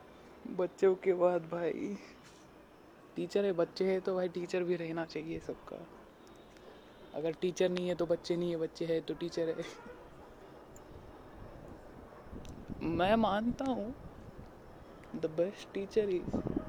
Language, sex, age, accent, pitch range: Marathi, female, 20-39, native, 165-185 Hz